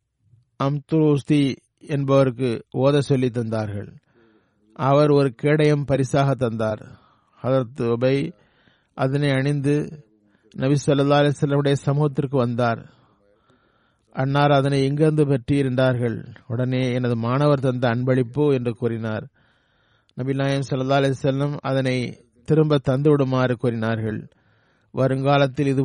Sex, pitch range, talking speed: male, 120-140 Hz, 95 wpm